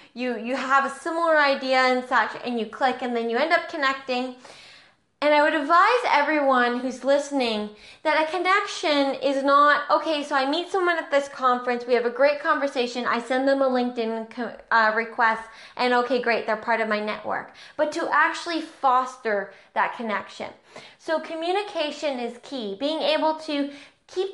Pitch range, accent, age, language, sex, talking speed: 245-320 Hz, American, 20-39, English, female, 175 wpm